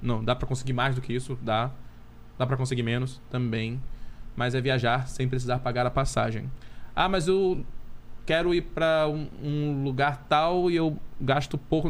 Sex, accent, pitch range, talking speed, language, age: male, Brazilian, 120-150 Hz, 175 wpm, Portuguese, 20-39